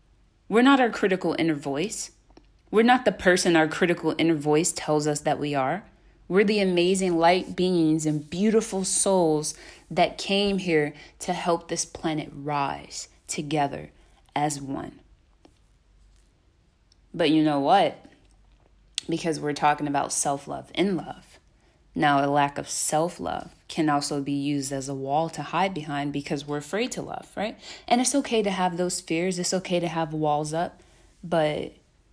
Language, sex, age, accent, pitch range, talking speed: English, female, 20-39, American, 150-180 Hz, 155 wpm